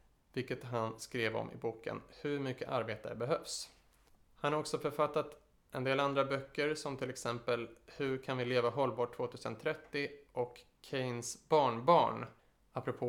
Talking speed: 140 wpm